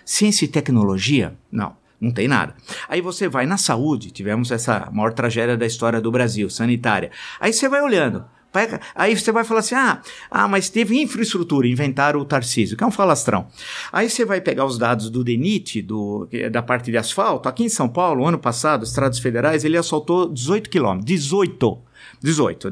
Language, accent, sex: Portuguese, Brazilian, male